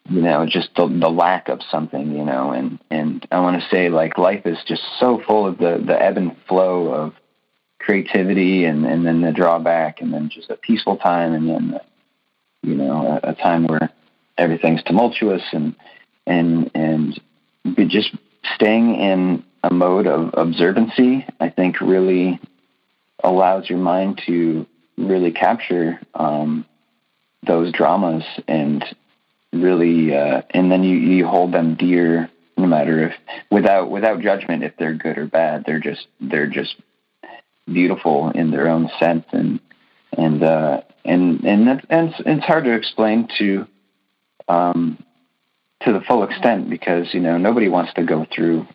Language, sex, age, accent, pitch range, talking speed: English, male, 30-49, American, 80-95 Hz, 155 wpm